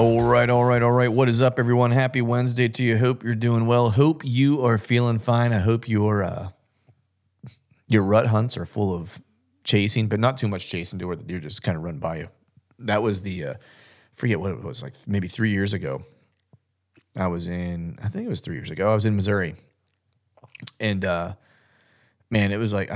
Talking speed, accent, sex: 210 wpm, American, male